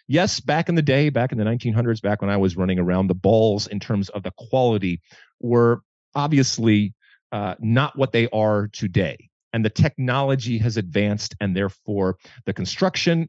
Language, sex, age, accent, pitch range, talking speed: English, male, 40-59, American, 95-125 Hz, 175 wpm